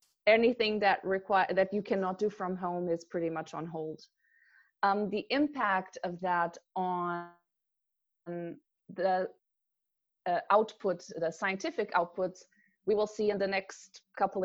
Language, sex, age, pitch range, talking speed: English, female, 20-39, 175-200 Hz, 135 wpm